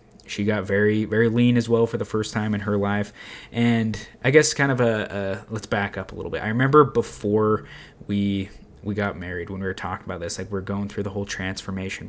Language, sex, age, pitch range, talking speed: English, male, 20-39, 95-115 Hz, 235 wpm